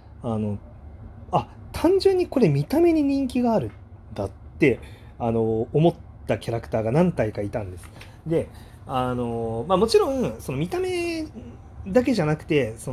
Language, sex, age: Japanese, male, 30-49